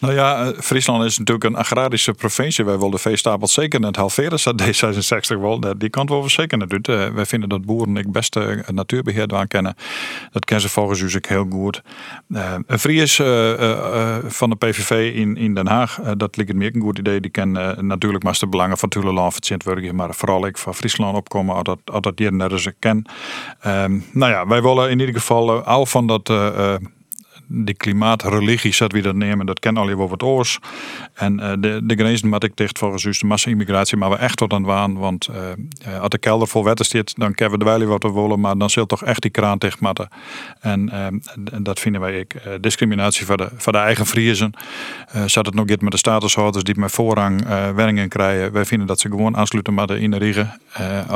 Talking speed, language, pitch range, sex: 225 wpm, Dutch, 100-115 Hz, male